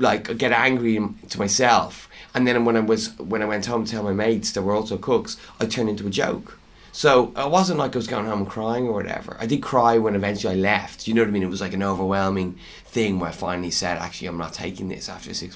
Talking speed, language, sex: 260 wpm, English, male